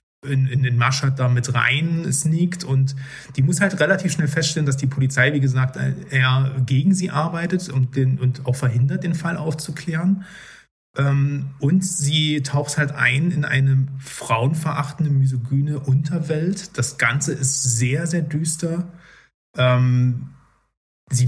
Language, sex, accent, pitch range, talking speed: German, male, German, 125-155 Hz, 140 wpm